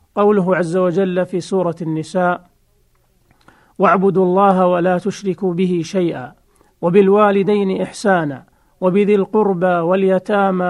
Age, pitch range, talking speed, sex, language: 40-59, 175-200 Hz, 95 wpm, male, Arabic